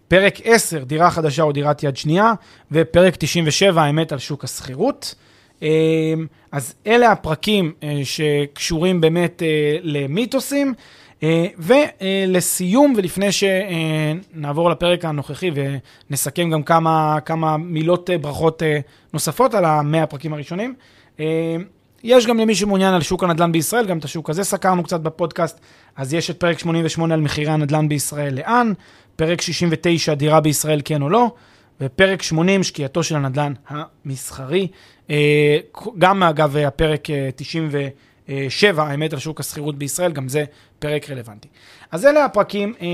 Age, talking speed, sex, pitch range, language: 30-49, 125 wpm, male, 150-185 Hz, Hebrew